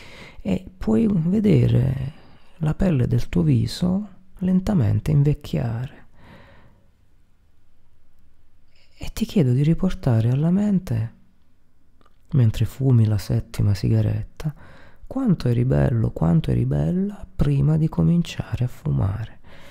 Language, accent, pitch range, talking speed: Italian, native, 110-160 Hz, 100 wpm